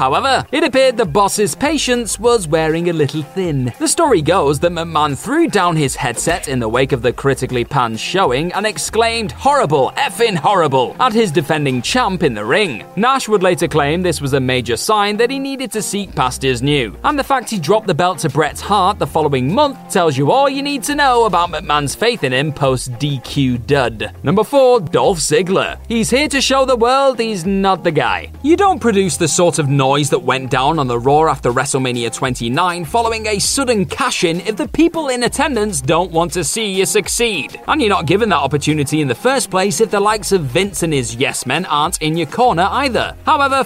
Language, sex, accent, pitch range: English, male, British, 145-235 Hz